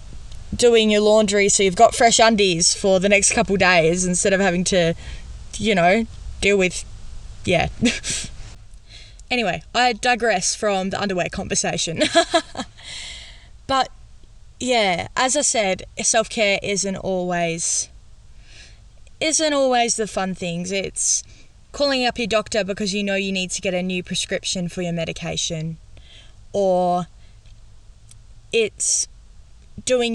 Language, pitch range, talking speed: English, 170-220 Hz, 125 wpm